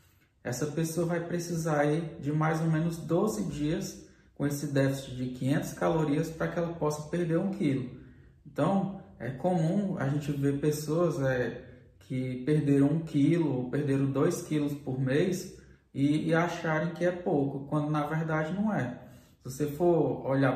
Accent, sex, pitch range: Brazilian, male, 130-155 Hz